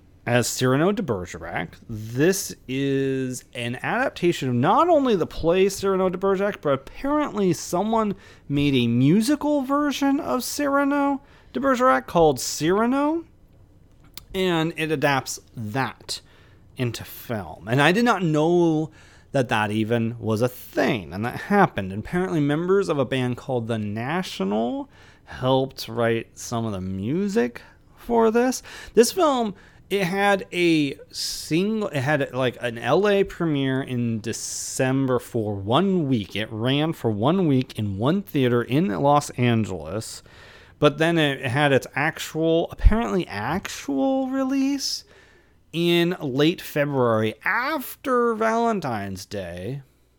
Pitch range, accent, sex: 120-195 Hz, American, male